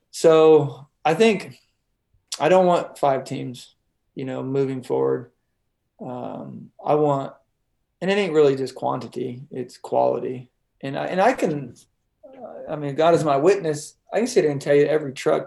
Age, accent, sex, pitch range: 20-39, American, male, 130-155 Hz